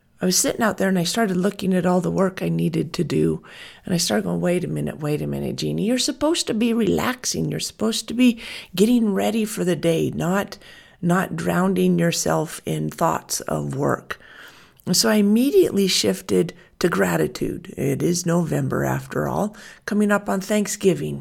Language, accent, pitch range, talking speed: English, American, 155-210 Hz, 185 wpm